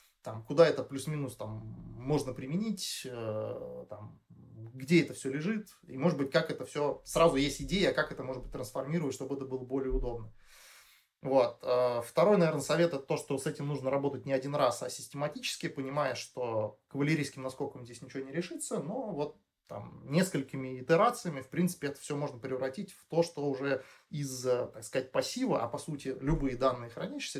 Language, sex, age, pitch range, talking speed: Russian, male, 20-39, 130-160 Hz, 165 wpm